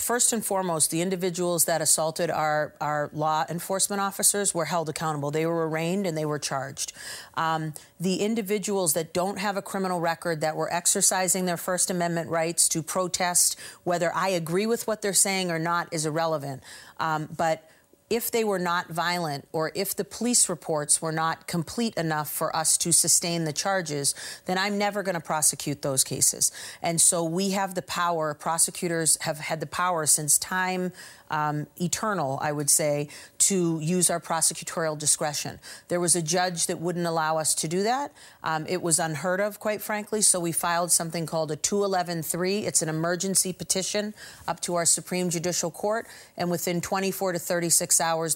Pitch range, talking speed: 160-185 Hz, 180 wpm